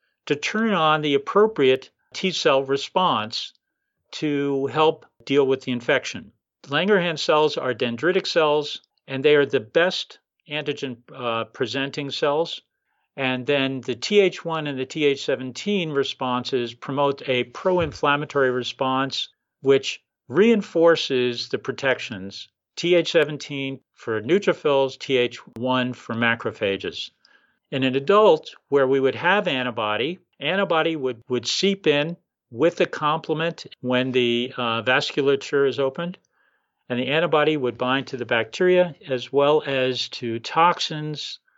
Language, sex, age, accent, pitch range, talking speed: English, male, 50-69, American, 125-155 Hz, 125 wpm